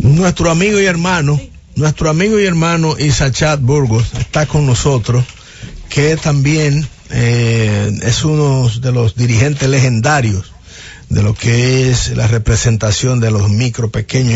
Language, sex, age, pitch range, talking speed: English, male, 50-69, 120-150 Hz, 135 wpm